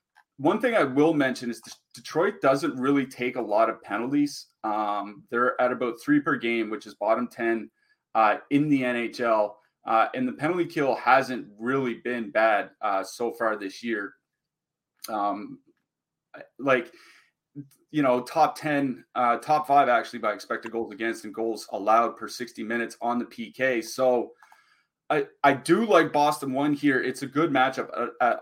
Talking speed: 170 wpm